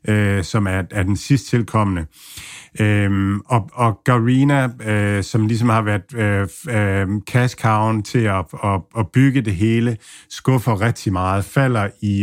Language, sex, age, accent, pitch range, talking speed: Danish, male, 50-69, native, 100-115 Hz, 145 wpm